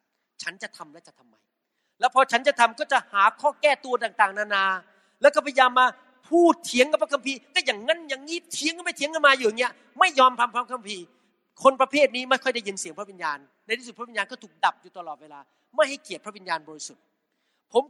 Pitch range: 190-260 Hz